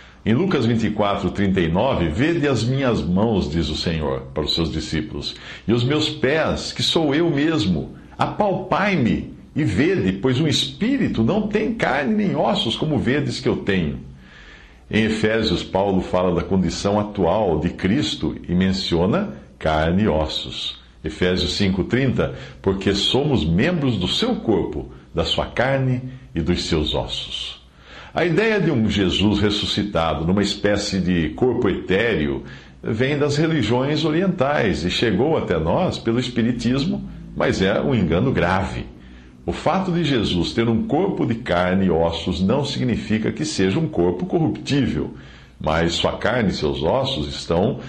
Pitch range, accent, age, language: 80-120 Hz, Brazilian, 60-79, English